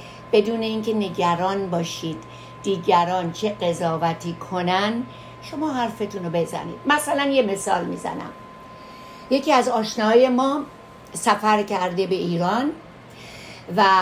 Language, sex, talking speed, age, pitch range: Persian, female, 105 wpm, 60-79, 195-250 Hz